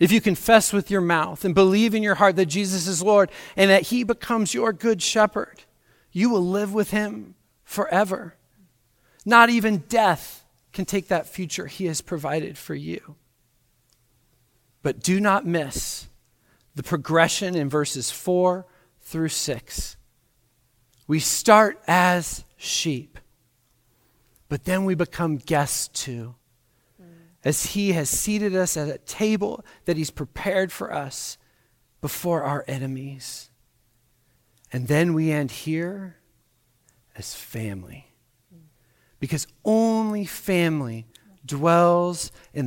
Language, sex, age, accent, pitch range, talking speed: English, male, 40-59, American, 125-190 Hz, 125 wpm